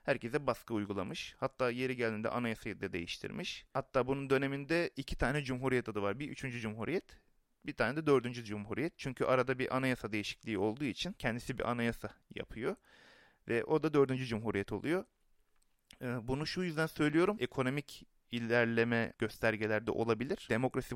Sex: male